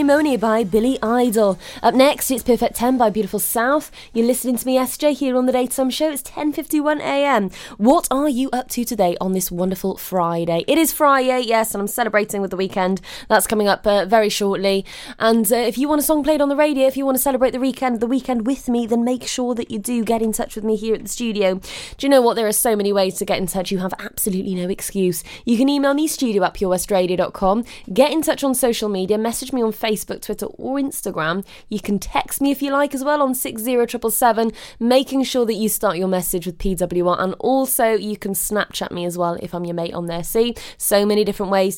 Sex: female